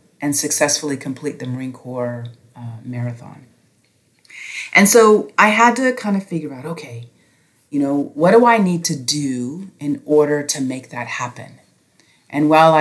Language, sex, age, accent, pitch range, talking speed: English, female, 30-49, American, 130-160 Hz, 160 wpm